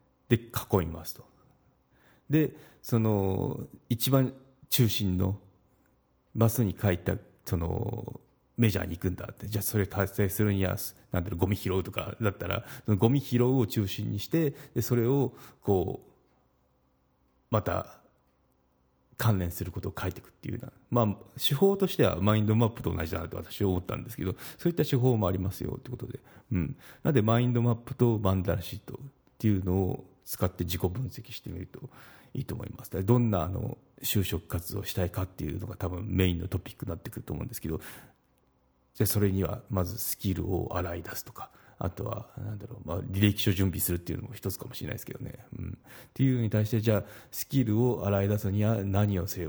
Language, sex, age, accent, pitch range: Japanese, male, 40-59, native, 95-120 Hz